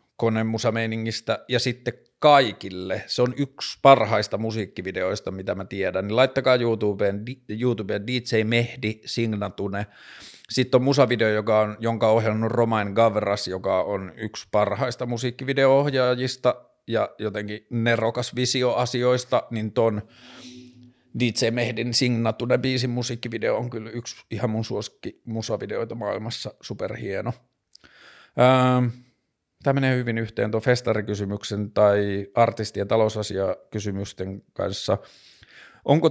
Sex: male